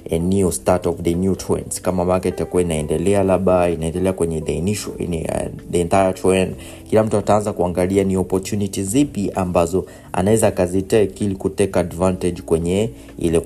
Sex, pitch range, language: male, 90-105 Hz, Swahili